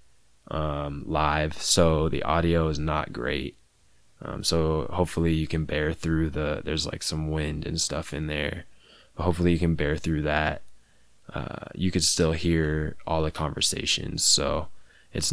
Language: English